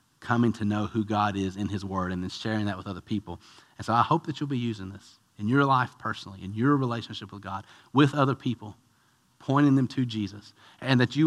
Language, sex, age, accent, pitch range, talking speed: English, male, 40-59, American, 110-140 Hz, 235 wpm